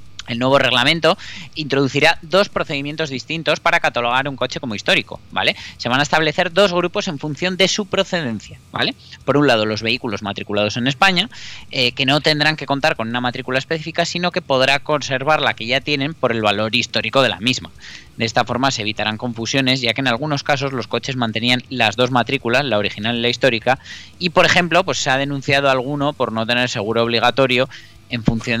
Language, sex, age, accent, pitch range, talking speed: Spanish, male, 20-39, Spanish, 115-145 Hz, 205 wpm